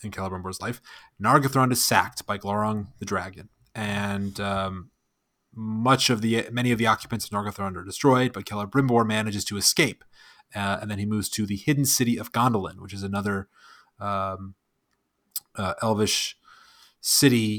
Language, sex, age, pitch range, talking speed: English, male, 30-49, 100-115 Hz, 155 wpm